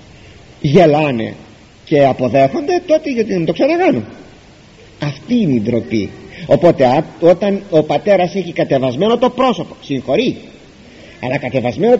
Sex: male